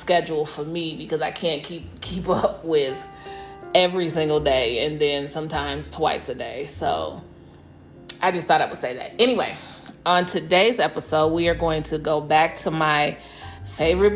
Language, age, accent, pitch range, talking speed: English, 30-49, American, 150-180 Hz, 170 wpm